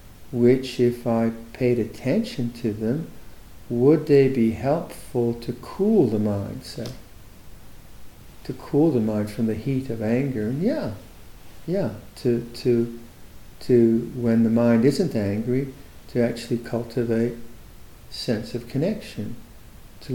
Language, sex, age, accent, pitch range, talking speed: English, male, 60-79, American, 115-130 Hz, 130 wpm